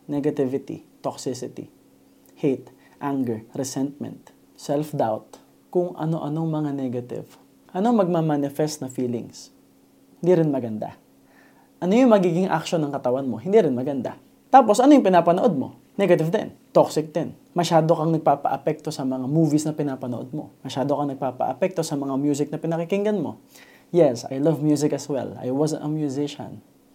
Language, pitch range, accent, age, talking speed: Filipino, 135-170 Hz, native, 20-39, 140 wpm